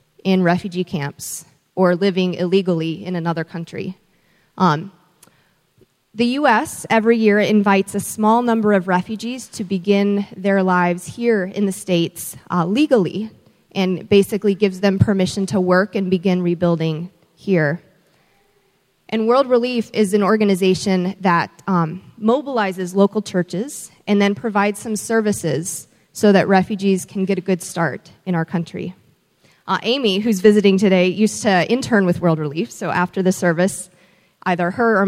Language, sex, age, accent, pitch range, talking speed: English, female, 30-49, American, 180-215 Hz, 145 wpm